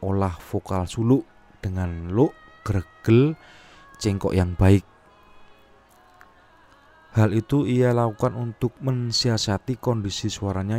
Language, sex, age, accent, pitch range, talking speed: Indonesian, male, 30-49, native, 95-120 Hz, 95 wpm